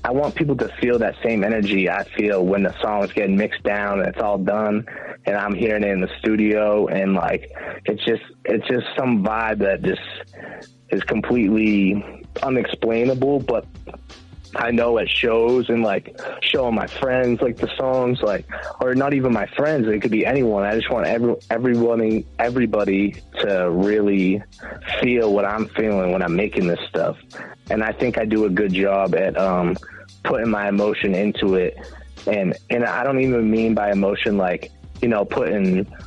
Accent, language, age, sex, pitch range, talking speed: American, English, 20-39, male, 100-115 Hz, 180 wpm